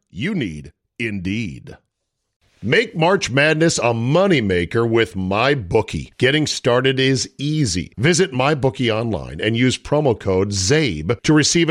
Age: 50-69